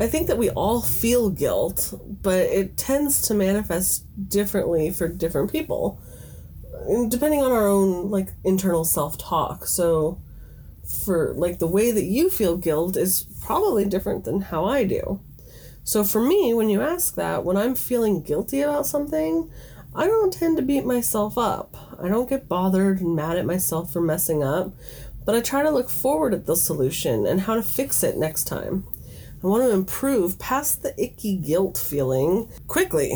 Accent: American